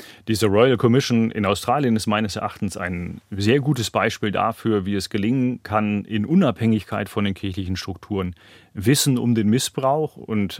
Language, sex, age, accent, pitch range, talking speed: German, male, 30-49, German, 100-125 Hz, 160 wpm